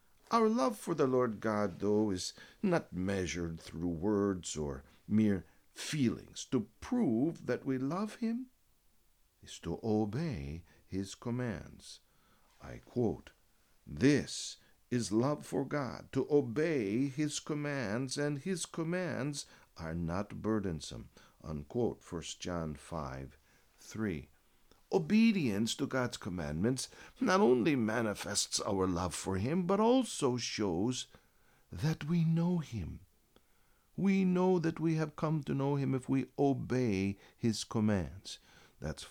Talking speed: 125 wpm